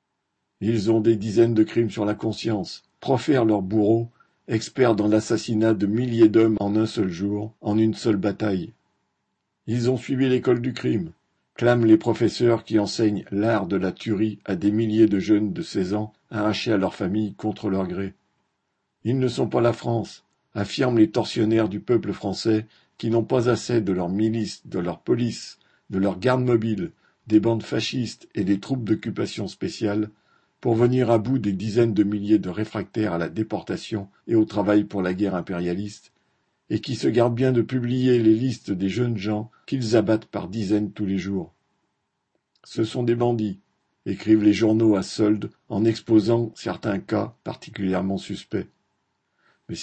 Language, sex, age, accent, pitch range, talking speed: French, male, 50-69, French, 105-115 Hz, 180 wpm